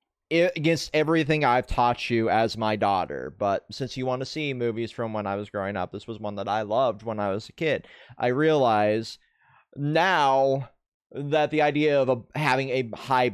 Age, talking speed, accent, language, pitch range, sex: 30-49, 190 wpm, American, English, 105-145 Hz, male